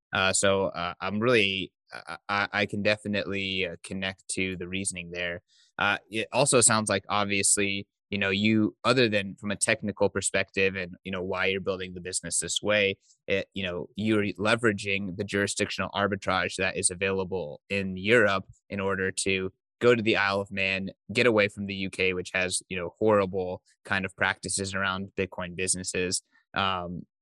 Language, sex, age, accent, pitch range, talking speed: English, male, 20-39, American, 95-110 Hz, 170 wpm